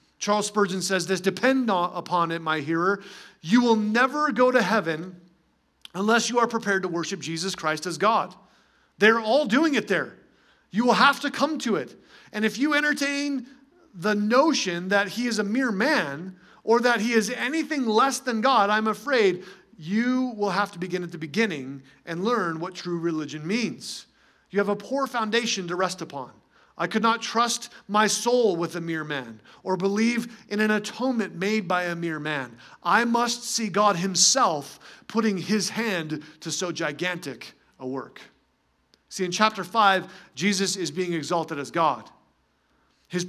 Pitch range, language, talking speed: 175-235 Hz, English, 175 wpm